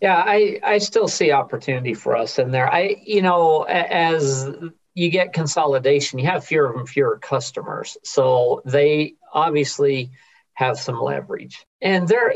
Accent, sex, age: American, male, 50-69